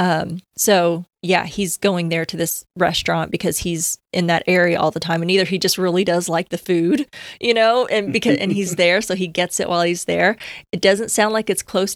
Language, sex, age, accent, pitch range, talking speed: English, female, 20-39, American, 175-205 Hz, 230 wpm